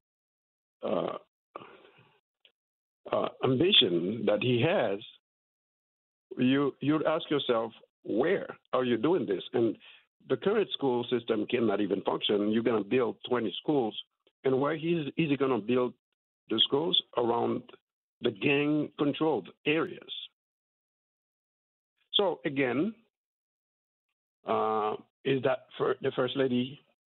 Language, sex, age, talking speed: English, male, 60-79, 115 wpm